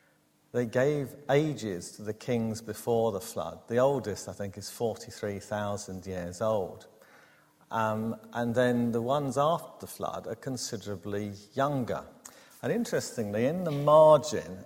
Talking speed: 135 wpm